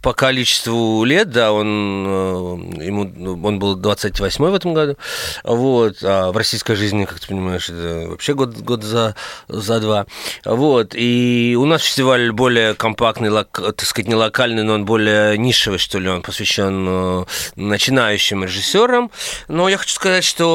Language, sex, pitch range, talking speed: Russian, male, 105-140 Hz, 160 wpm